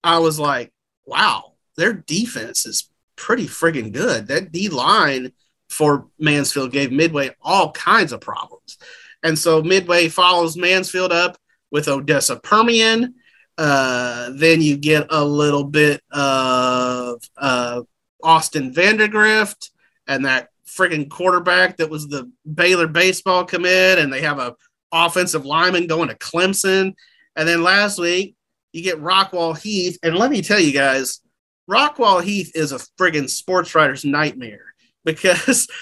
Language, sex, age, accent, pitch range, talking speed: English, male, 30-49, American, 150-195 Hz, 140 wpm